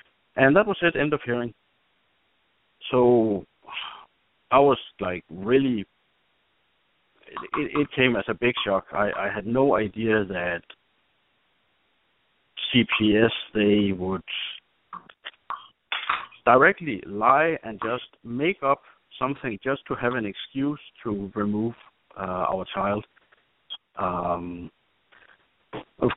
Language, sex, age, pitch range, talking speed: English, male, 60-79, 95-120 Hz, 110 wpm